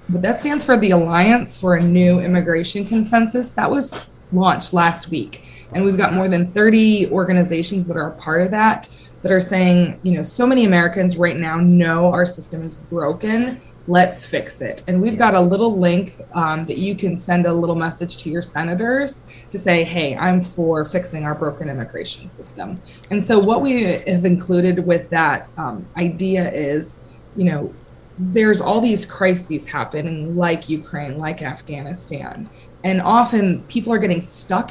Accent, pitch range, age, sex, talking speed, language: American, 165-195 Hz, 20-39, female, 175 wpm, English